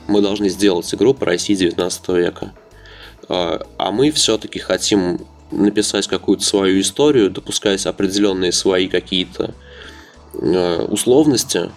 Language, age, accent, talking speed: Russian, 20-39, native, 105 wpm